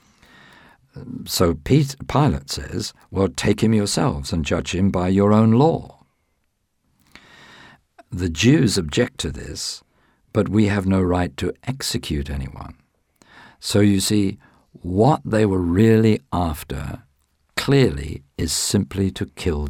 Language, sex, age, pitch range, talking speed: English, male, 50-69, 75-100 Hz, 120 wpm